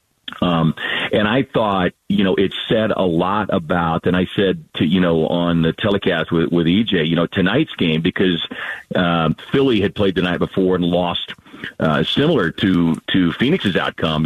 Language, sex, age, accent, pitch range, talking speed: English, male, 50-69, American, 90-105 Hz, 190 wpm